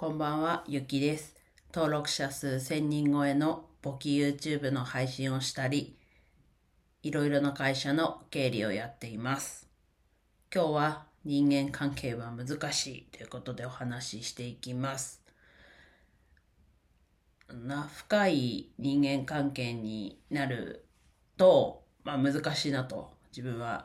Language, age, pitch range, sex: Japanese, 40-59, 105-150 Hz, female